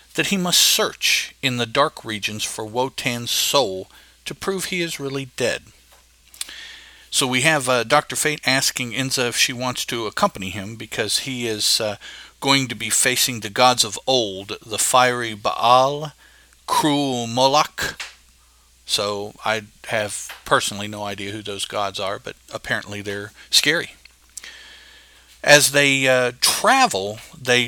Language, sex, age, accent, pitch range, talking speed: English, male, 50-69, American, 105-135 Hz, 145 wpm